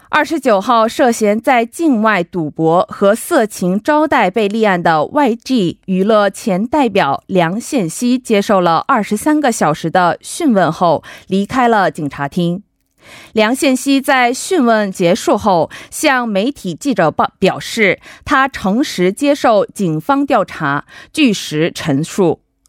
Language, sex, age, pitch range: Korean, female, 20-39, 185-275 Hz